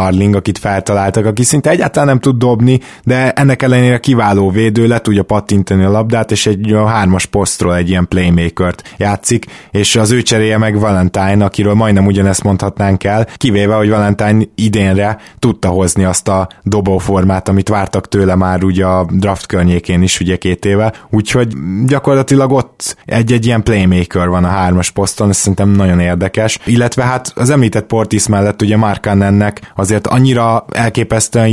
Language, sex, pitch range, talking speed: Hungarian, male, 95-110 Hz, 165 wpm